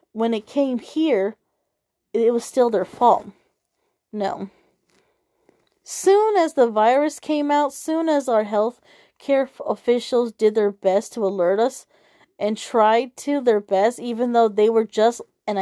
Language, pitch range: English, 220-290 Hz